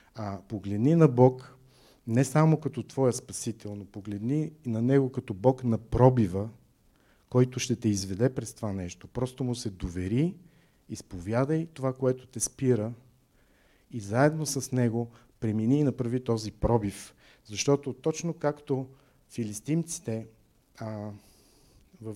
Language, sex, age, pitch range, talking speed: Bulgarian, male, 50-69, 105-135 Hz, 130 wpm